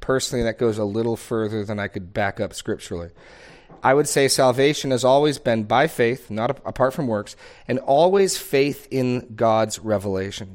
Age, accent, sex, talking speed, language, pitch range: 30-49, American, male, 180 wpm, English, 110-150 Hz